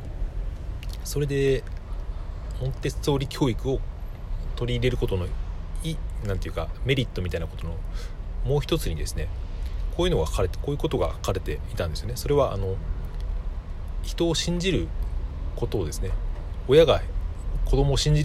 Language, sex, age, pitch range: Japanese, male, 30-49, 80-120 Hz